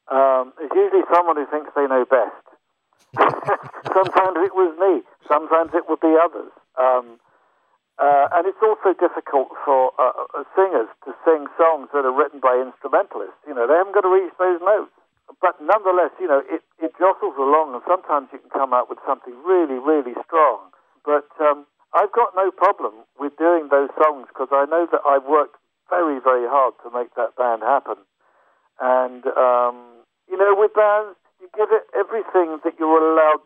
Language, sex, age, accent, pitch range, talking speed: English, male, 60-79, British, 130-175 Hz, 180 wpm